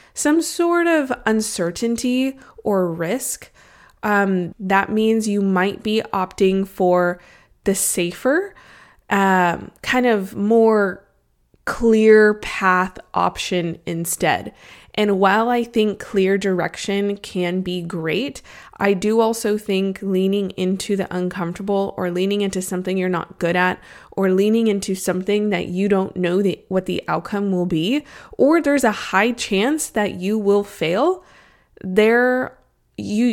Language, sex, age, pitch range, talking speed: English, female, 20-39, 180-215 Hz, 130 wpm